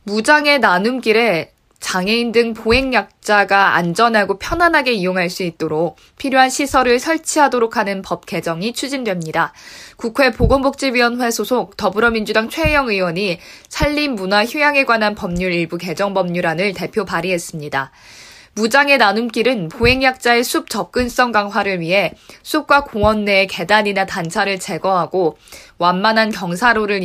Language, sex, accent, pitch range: Korean, female, native, 190-255 Hz